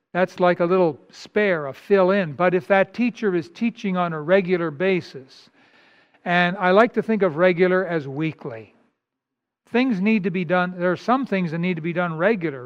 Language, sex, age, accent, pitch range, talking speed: English, male, 60-79, American, 165-210 Hz, 195 wpm